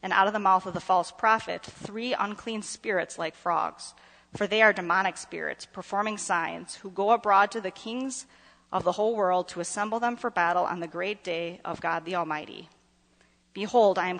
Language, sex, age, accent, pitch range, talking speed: English, female, 30-49, American, 175-215 Hz, 200 wpm